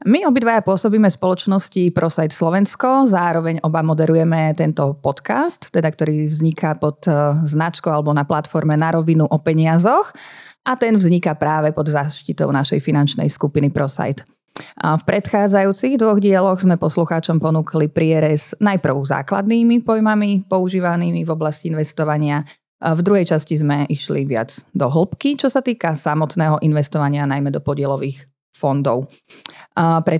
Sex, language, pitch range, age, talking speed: female, Slovak, 150-195 Hz, 30-49, 130 wpm